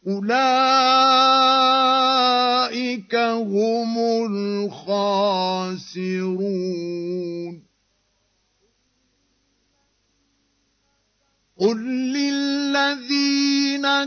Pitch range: 205-260 Hz